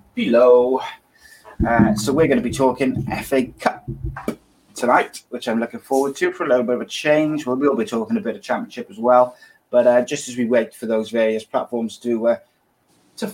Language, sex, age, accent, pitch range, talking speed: English, male, 20-39, British, 120-140 Hz, 210 wpm